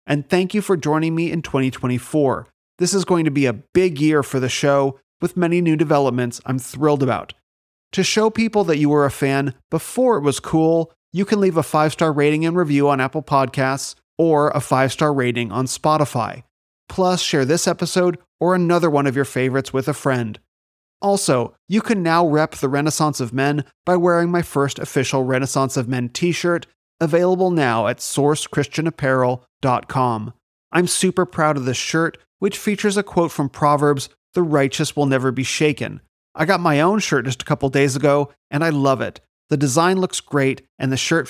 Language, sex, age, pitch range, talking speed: English, male, 30-49, 130-165 Hz, 185 wpm